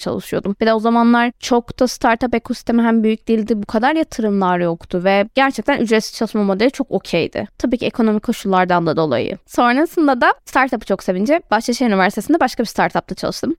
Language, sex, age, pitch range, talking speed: Turkish, female, 20-39, 195-265 Hz, 175 wpm